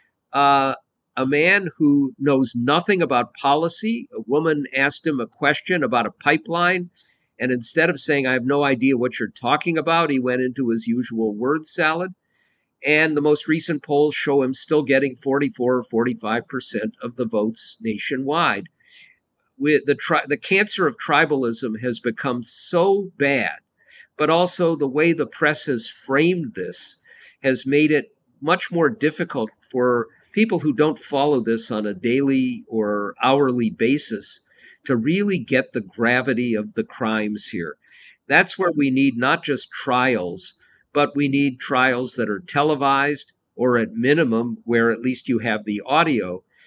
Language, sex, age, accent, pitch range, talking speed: English, male, 50-69, American, 120-150 Hz, 160 wpm